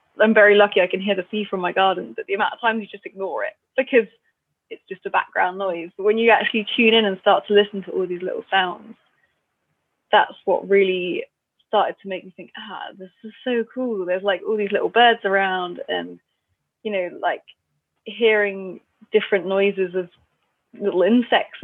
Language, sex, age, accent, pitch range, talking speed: English, female, 20-39, British, 185-215 Hz, 195 wpm